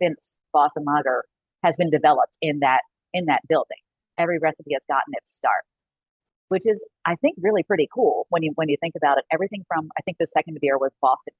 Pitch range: 140-175 Hz